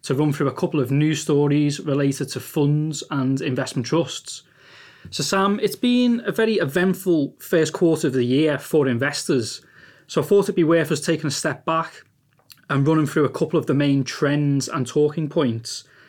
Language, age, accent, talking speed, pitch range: English, 20-39, British, 190 wpm, 140-165 Hz